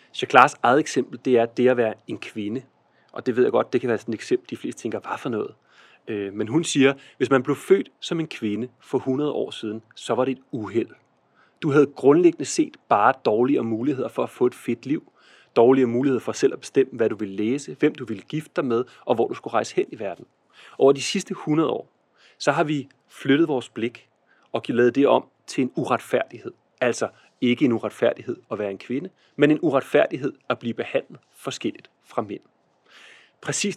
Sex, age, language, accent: male, 30-49, Danish, native